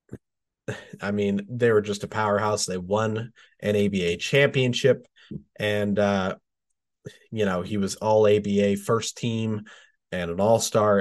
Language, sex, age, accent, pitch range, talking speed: English, male, 30-49, American, 100-120 Hz, 135 wpm